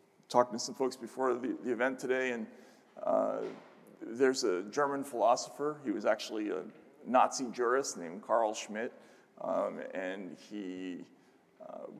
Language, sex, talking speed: English, male, 140 wpm